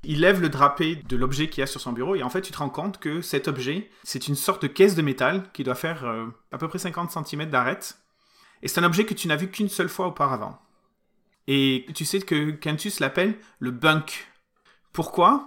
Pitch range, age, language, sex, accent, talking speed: 140-185 Hz, 30-49, French, male, French, 235 wpm